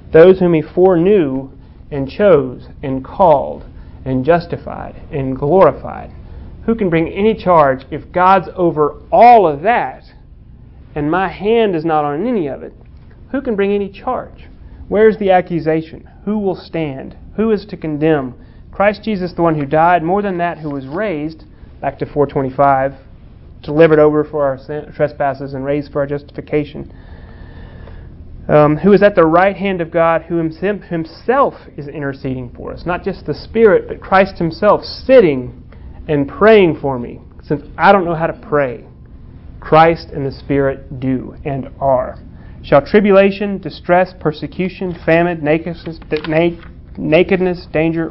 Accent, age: American, 30-49